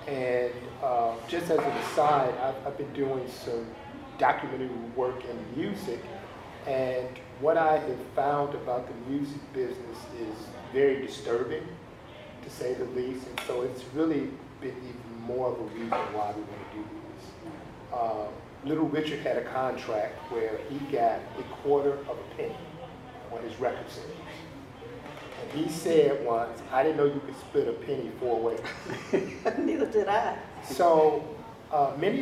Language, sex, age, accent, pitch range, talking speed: English, male, 40-59, American, 120-155 Hz, 155 wpm